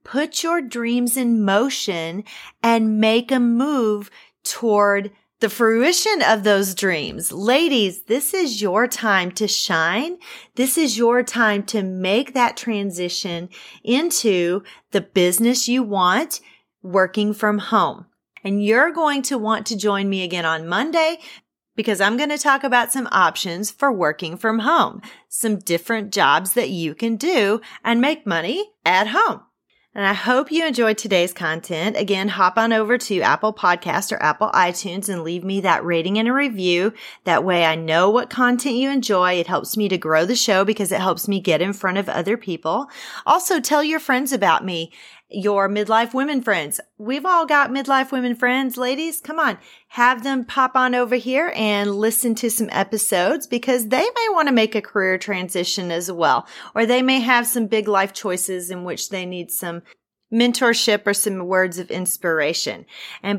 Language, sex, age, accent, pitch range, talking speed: English, female, 40-59, American, 190-255 Hz, 175 wpm